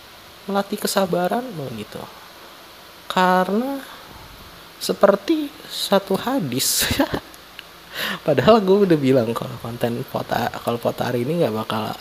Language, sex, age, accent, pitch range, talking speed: Indonesian, male, 20-39, native, 135-200 Hz, 100 wpm